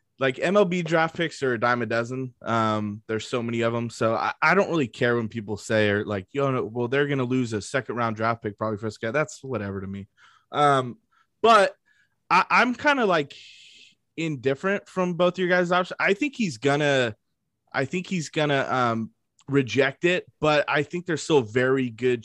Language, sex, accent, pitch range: English, male, American, 120-155 Hz